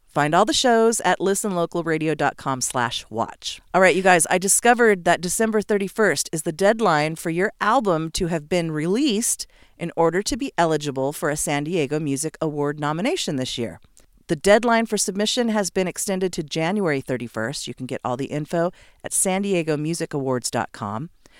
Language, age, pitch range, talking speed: English, 40-59, 150-215 Hz, 165 wpm